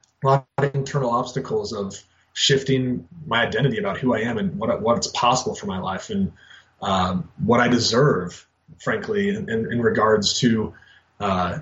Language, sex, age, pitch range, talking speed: English, male, 20-39, 110-140 Hz, 160 wpm